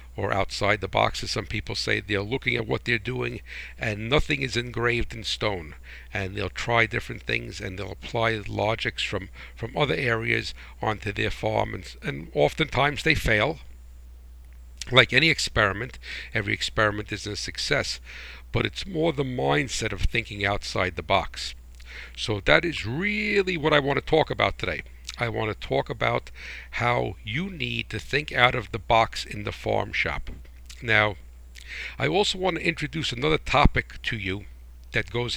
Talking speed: 170 wpm